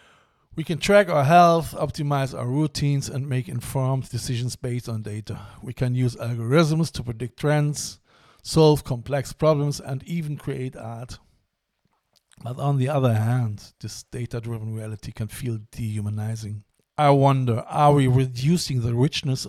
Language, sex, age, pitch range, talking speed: English, male, 50-69, 120-140 Hz, 145 wpm